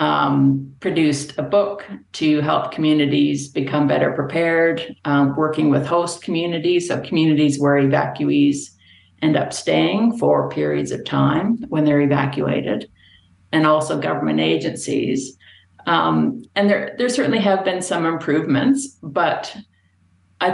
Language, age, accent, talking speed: English, 50-69, American, 130 wpm